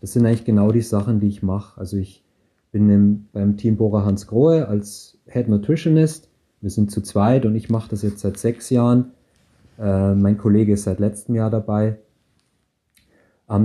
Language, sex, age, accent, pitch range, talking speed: German, male, 30-49, German, 100-115 Hz, 175 wpm